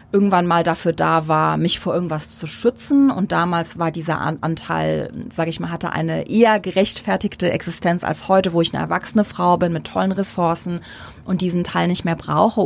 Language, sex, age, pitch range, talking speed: German, female, 30-49, 170-215 Hz, 190 wpm